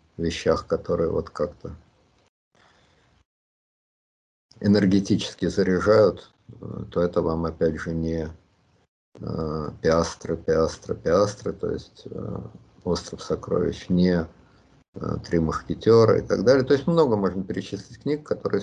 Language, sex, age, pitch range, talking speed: Russian, male, 50-69, 85-105 Hz, 105 wpm